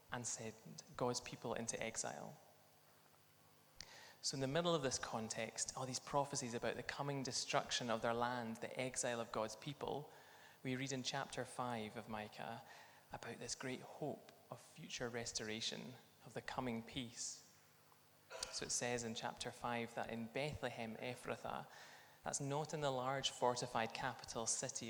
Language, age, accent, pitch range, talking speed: English, 20-39, British, 115-130 Hz, 155 wpm